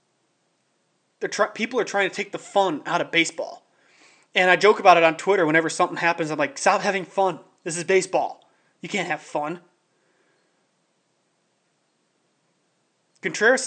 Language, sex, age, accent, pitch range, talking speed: English, male, 30-49, American, 165-205 Hz, 145 wpm